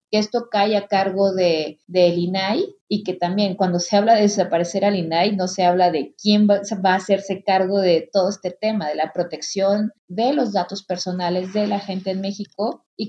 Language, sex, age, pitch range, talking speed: Spanish, female, 30-49, 190-225 Hz, 210 wpm